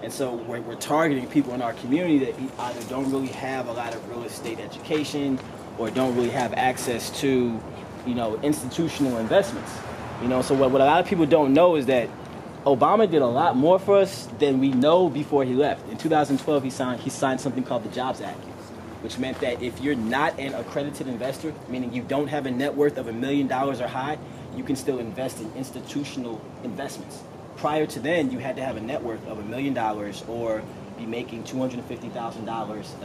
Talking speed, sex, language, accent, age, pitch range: 205 wpm, male, English, American, 20-39, 115-150 Hz